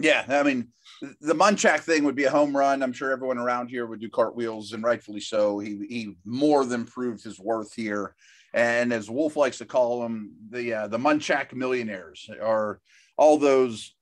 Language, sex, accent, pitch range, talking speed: English, male, American, 110-130 Hz, 195 wpm